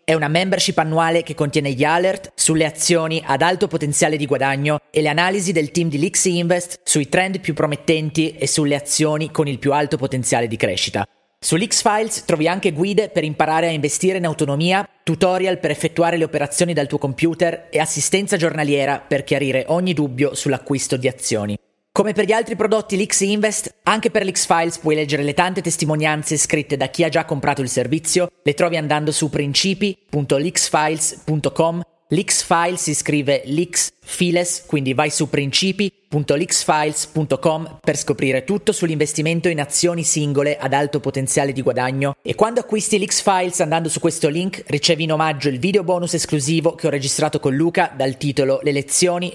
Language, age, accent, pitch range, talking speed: Italian, 30-49, native, 145-175 Hz, 175 wpm